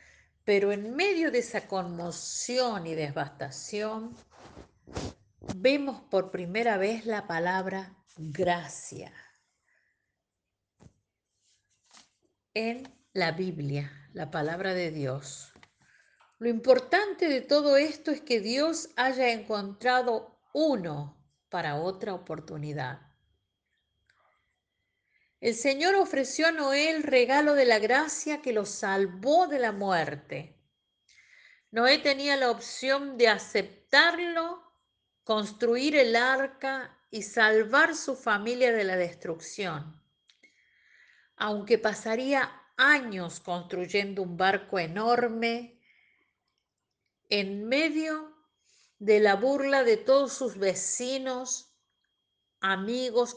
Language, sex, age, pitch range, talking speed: Spanish, female, 50-69, 180-265 Hz, 95 wpm